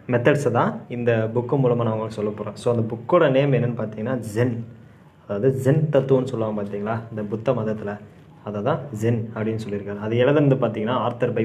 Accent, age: native, 20-39